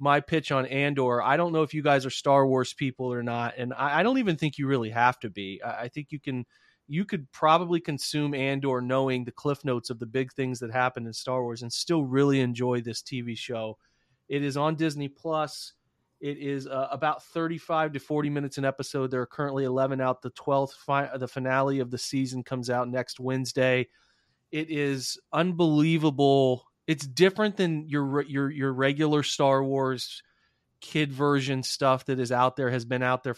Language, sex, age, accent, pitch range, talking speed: English, male, 30-49, American, 125-145 Hz, 200 wpm